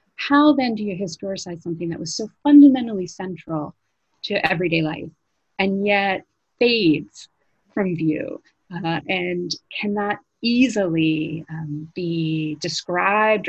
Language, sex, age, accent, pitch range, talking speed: English, female, 30-49, American, 165-230 Hz, 115 wpm